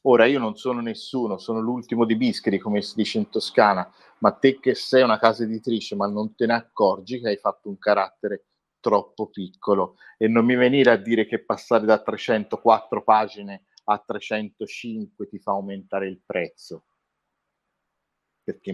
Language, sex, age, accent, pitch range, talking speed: Italian, male, 50-69, native, 100-120 Hz, 165 wpm